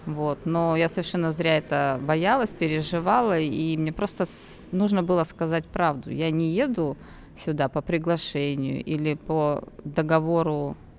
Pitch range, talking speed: 150-190 Hz, 130 wpm